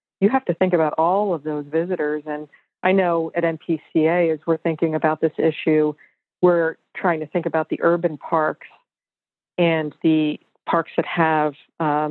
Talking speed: 165 wpm